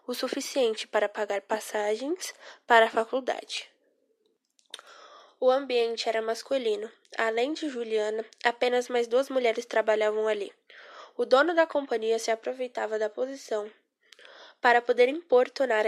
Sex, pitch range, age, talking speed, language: female, 225-290 Hz, 10-29, 120 wpm, Portuguese